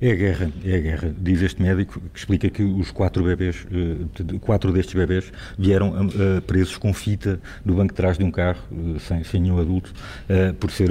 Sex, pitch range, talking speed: male, 85-95 Hz, 195 wpm